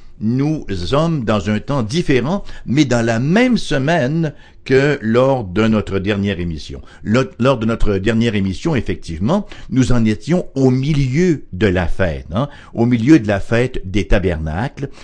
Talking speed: 155 wpm